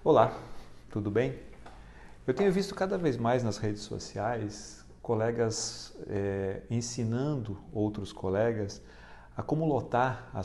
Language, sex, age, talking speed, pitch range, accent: Portuguese, male, 40-59, 120 wpm, 100-115 Hz, Brazilian